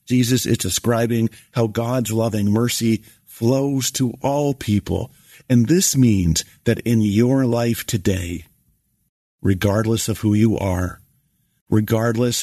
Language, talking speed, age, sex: English, 120 wpm, 50-69, male